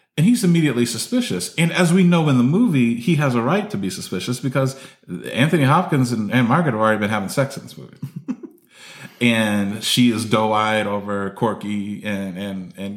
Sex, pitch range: male, 105-145 Hz